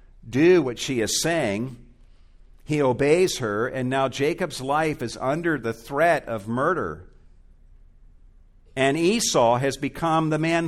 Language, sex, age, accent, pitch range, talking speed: English, male, 50-69, American, 95-130 Hz, 135 wpm